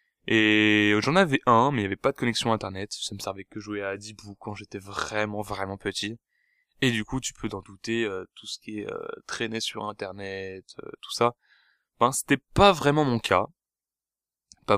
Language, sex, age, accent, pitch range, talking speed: French, male, 10-29, French, 105-130 Hz, 205 wpm